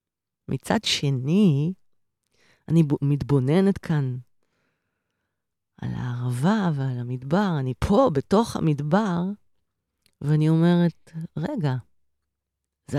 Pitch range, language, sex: 135-185 Hz, Hebrew, female